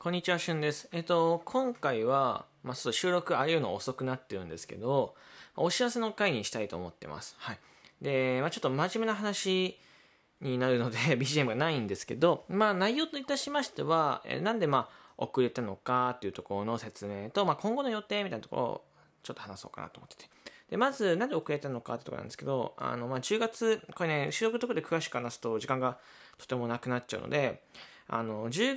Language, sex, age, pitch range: Japanese, male, 20-39, 120-190 Hz